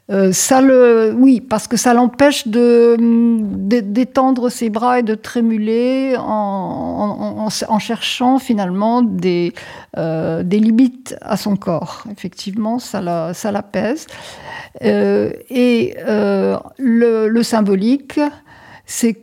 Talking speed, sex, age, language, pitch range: 130 wpm, female, 50-69, French, 180-235 Hz